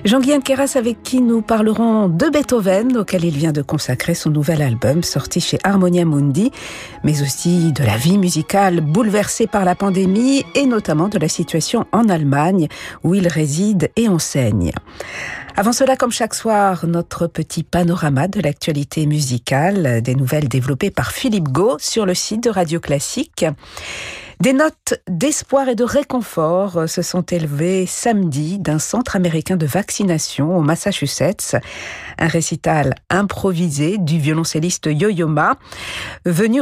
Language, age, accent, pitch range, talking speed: French, 50-69, French, 150-200 Hz, 150 wpm